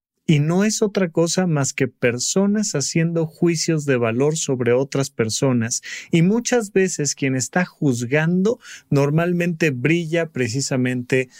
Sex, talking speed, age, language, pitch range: male, 125 wpm, 40-59, Spanish, 135-190 Hz